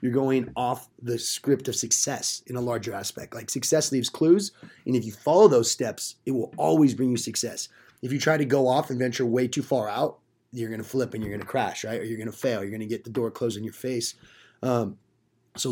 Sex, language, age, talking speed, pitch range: male, English, 20-39, 235 wpm, 115-140 Hz